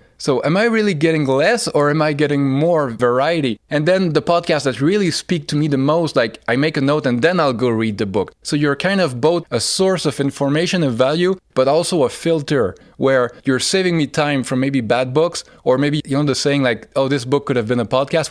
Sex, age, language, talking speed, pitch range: male, 20-39, English, 245 wpm, 130-160 Hz